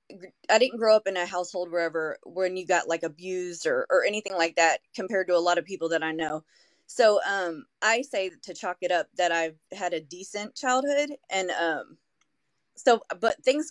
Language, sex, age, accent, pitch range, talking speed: English, female, 20-39, American, 175-230 Hz, 200 wpm